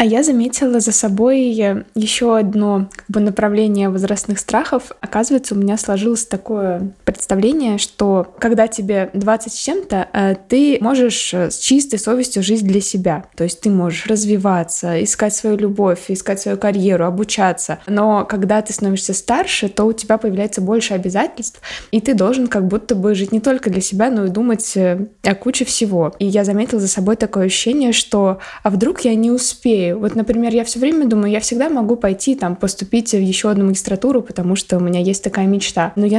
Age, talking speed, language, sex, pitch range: 20-39, 180 wpm, Russian, female, 195-230 Hz